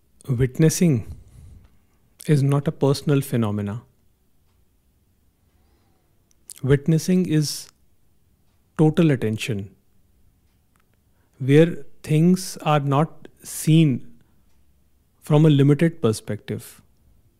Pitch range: 105-155 Hz